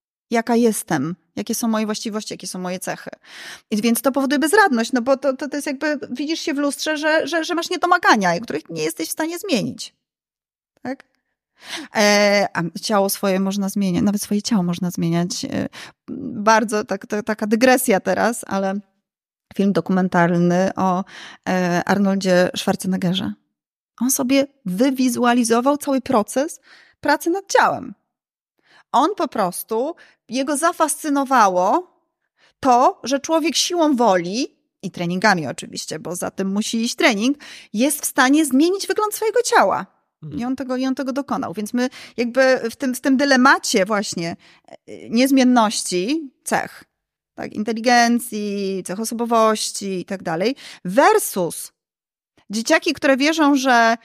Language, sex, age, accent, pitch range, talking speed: Polish, female, 20-39, native, 195-285 Hz, 140 wpm